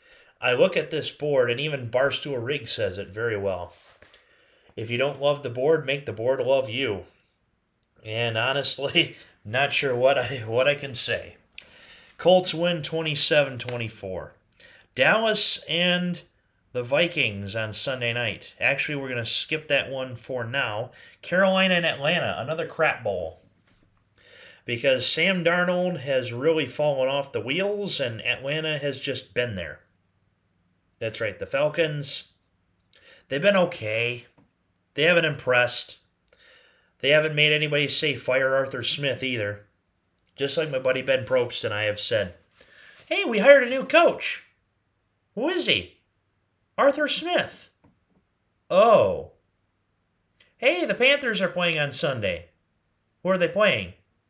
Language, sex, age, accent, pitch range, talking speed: English, male, 30-49, American, 110-180 Hz, 140 wpm